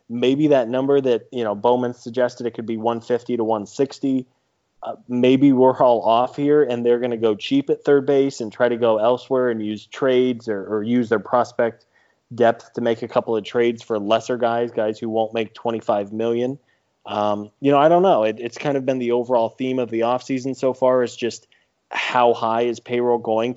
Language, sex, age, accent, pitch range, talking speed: English, male, 20-39, American, 110-130 Hz, 215 wpm